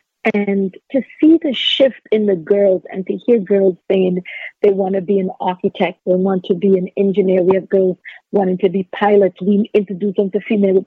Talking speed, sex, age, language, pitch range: 205 wpm, female, 50-69, English, 185-230 Hz